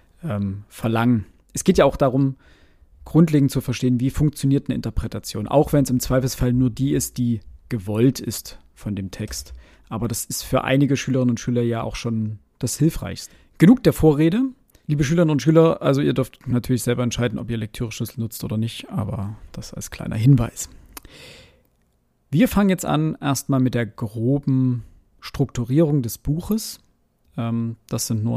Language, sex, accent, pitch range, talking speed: German, male, German, 110-140 Hz, 165 wpm